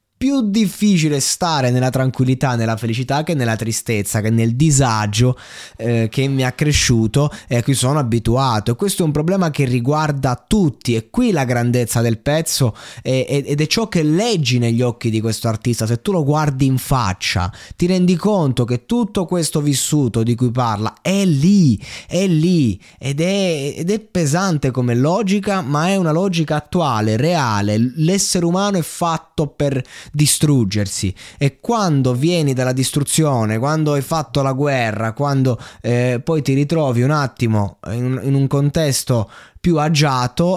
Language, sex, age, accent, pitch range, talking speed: Italian, male, 20-39, native, 120-160 Hz, 165 wpm